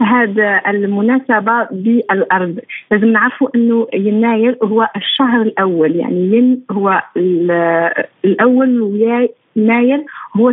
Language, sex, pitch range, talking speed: Arabic, female, 200-245 Hz, 95 wpm